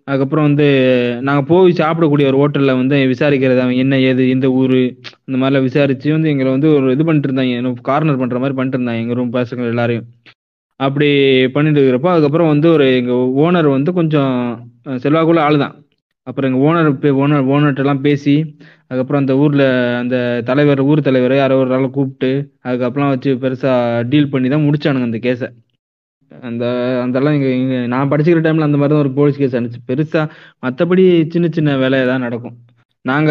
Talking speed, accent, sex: 155 wpm, native, male